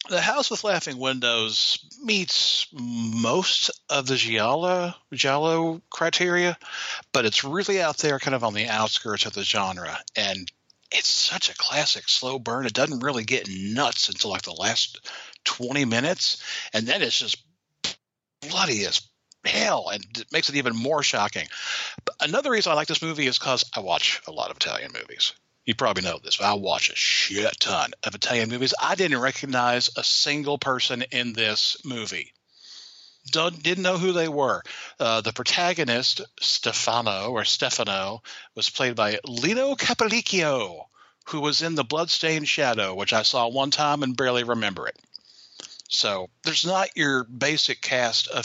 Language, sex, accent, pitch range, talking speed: English, male, American, 115-160 Hz, 165 wpm